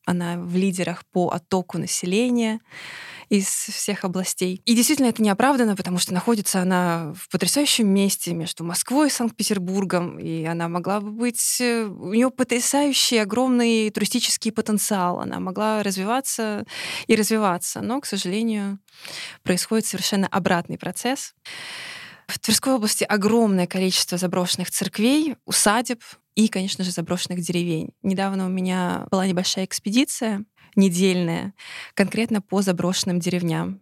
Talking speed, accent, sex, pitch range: 125 wpm, native, female, 180-215 Hz